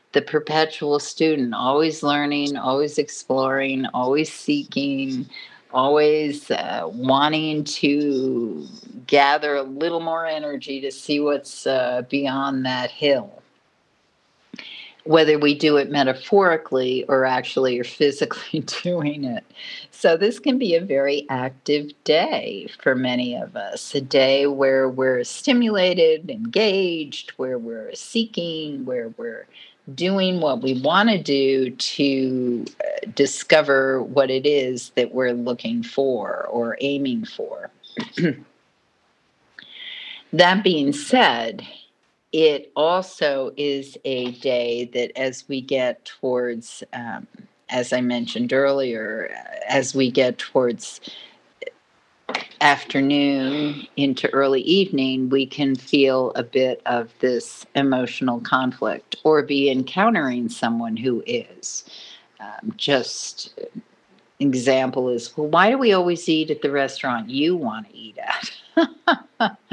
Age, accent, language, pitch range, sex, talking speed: 50-69, American, English, 130-180 Hz, female, 120 wpm